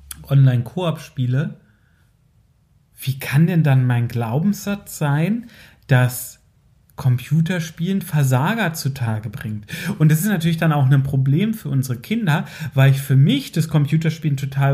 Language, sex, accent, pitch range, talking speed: German, male, German, 135-165 Hz, 125 wpm